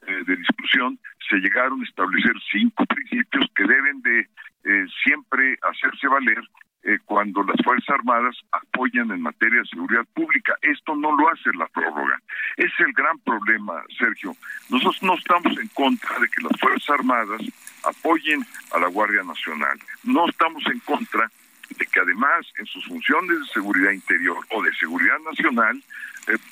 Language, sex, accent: Spanish, male, Mexican